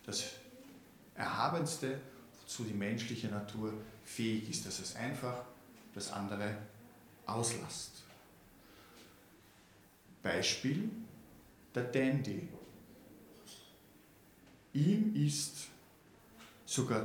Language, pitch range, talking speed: German, 100-140 Hz, 70 wpm